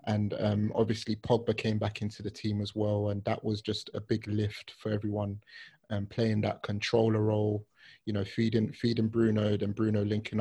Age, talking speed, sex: 20-39, 190 wpm, male